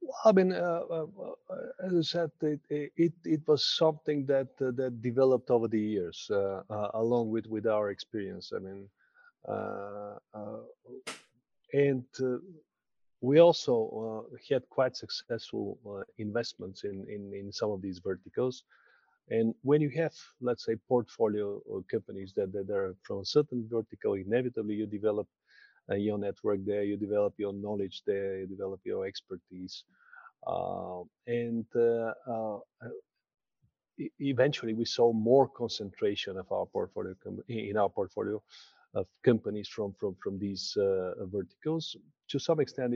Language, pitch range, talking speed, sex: Romanian, 100-135 Hz, 145 wpm, male